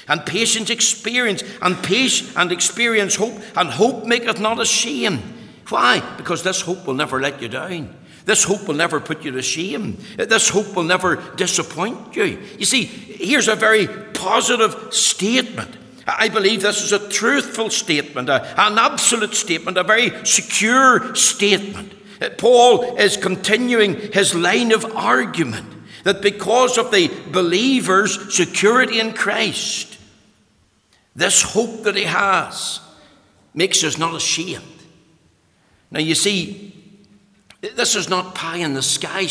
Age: 60-79